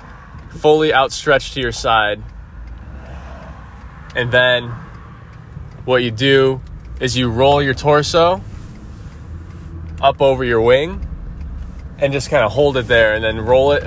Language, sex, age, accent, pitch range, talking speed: English, male, 20-39, American, 90-135 Hz, 130 wpm